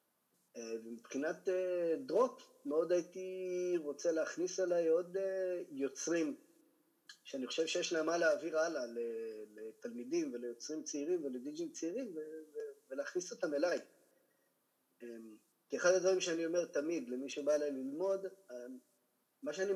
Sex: male